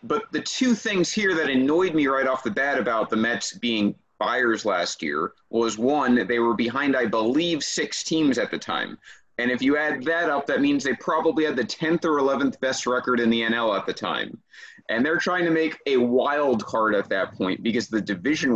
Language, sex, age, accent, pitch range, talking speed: English, male, 30-49, American, 120-165 Hz, 220 wpm